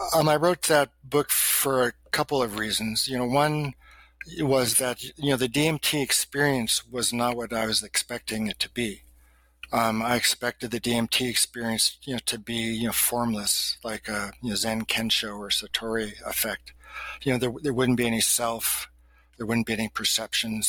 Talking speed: 185 wpm